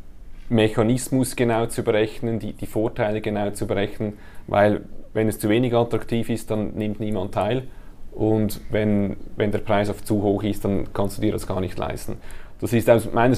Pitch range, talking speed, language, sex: 105-115 Hz, 185 wpm, German, male